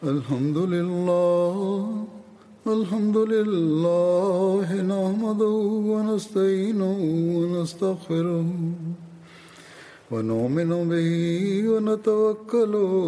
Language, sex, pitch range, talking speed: Turkish, male, 170-215 Hz, 55 wpm